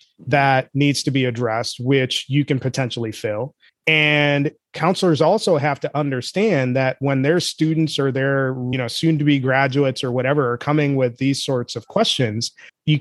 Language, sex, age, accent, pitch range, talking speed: English, male, 30-49, American, 130-155 Hz, 175 wpm